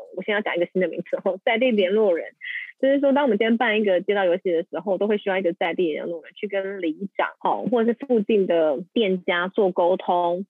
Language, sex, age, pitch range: Chinese, female, 20-39, 185-240 Hz